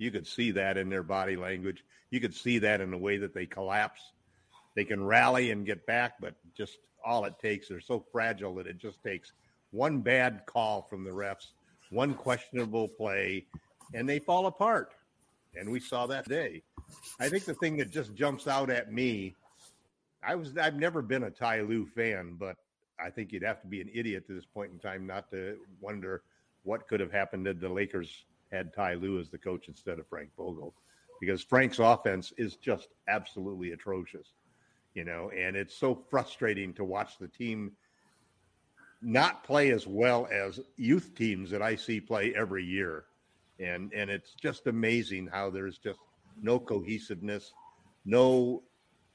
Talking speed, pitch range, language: 185 wpm, 95-120 Hz, English